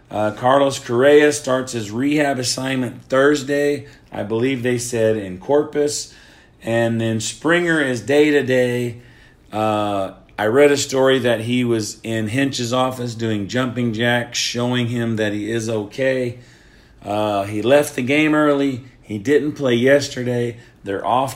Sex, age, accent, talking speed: male, 40-59, American, 140 wpm